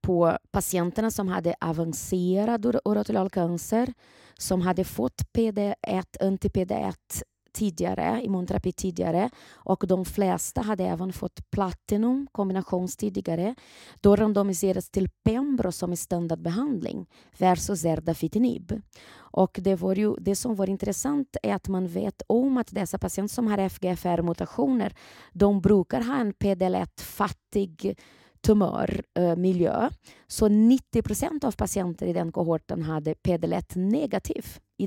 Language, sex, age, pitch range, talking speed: Swedish, female, 30-49, 180-215 Hz, 120 wpm